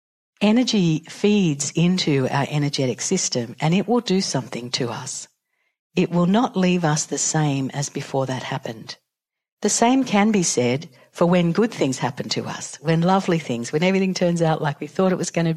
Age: 50-69